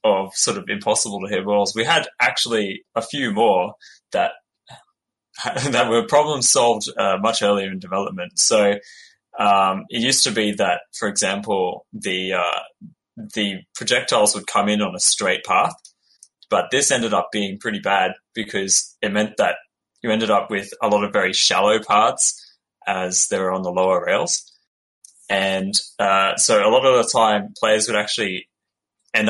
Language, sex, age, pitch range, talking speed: English, male, 20-39, 95-115 Hz, 170 wpm